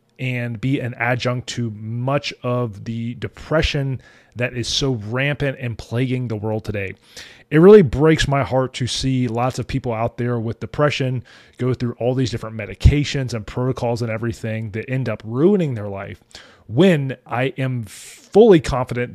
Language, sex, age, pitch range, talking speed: English, male, 30-49, 115-135 Hz, 165 wpm